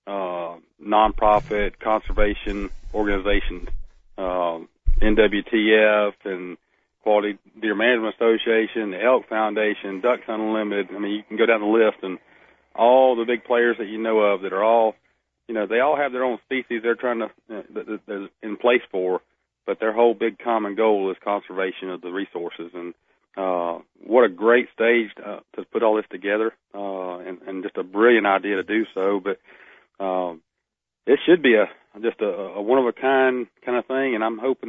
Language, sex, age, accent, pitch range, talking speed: English, male, 40-59, American, 100-120 Hz, 175 wpm